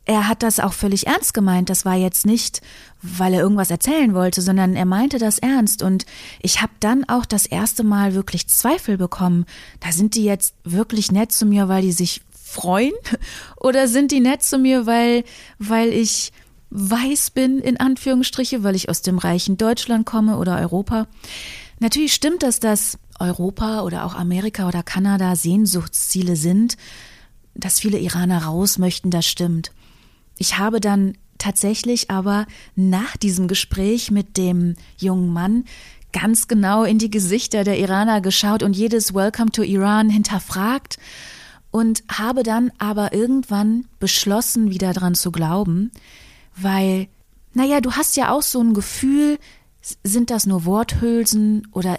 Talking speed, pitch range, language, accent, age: 155 wpm, 185-230 Hz, German, German, 30-49